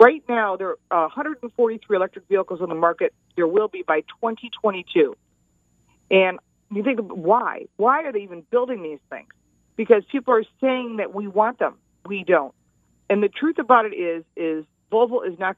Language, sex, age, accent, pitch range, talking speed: English, female, 50-69, American, 165-225 Hz, 175 wpm